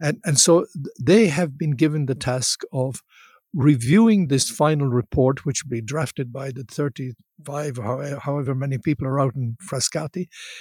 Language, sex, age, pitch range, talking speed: English, male, 60-79, 130-160 Hz, 160 wpm